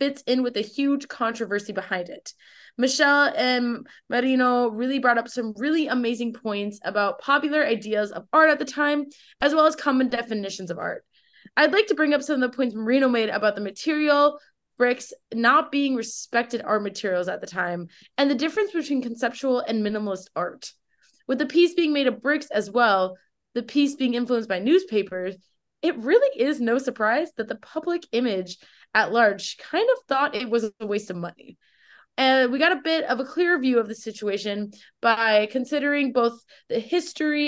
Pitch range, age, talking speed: 215-290 Hz, 20-39, 185 wpm